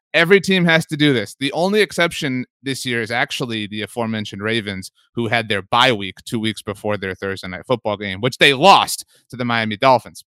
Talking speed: 210 wpm